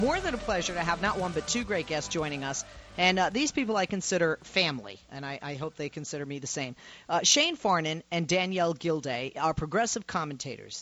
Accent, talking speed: American, 215 wpm